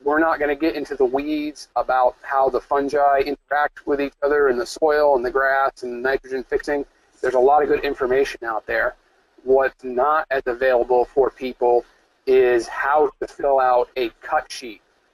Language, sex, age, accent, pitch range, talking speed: English, male, 40-59, American, 125-170 Hz, 185 wpm